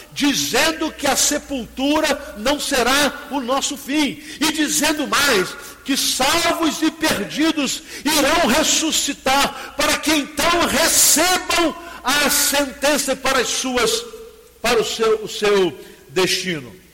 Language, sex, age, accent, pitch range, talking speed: Portuguese, male, 50-69, Brazilian, 250-305 Hz, 115 wpm